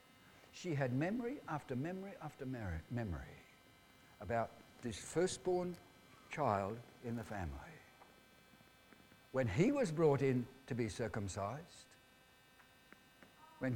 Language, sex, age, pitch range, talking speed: English, male, 60-79, 110-150 Hz, 100 wpm